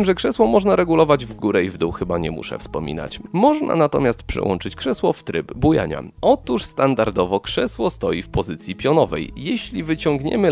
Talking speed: 165 wpm